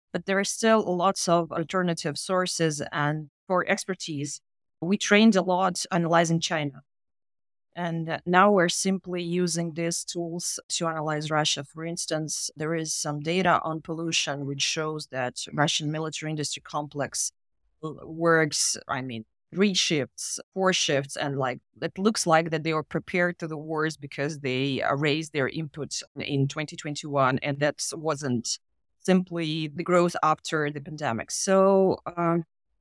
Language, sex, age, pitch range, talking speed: English, female, 30-49, 150-180 Hz, 145 wpm